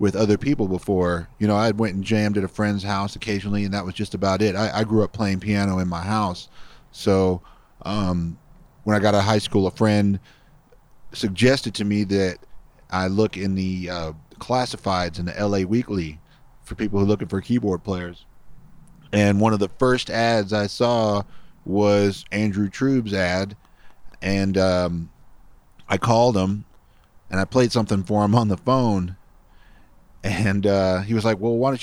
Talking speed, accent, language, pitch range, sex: 180 wpm, American, English, 95-110 Hz, male